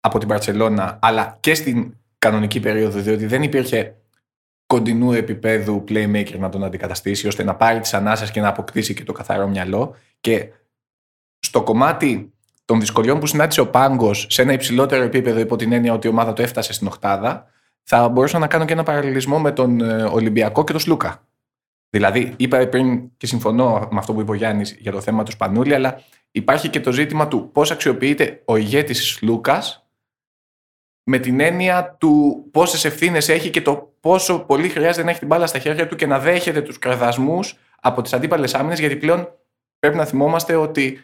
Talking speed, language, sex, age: 185 wpm, Greek, male, 20-39